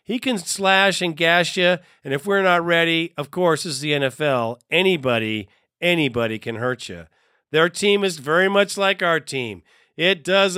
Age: 50-69